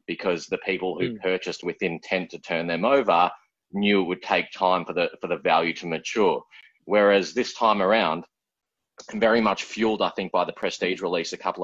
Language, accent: English, Australian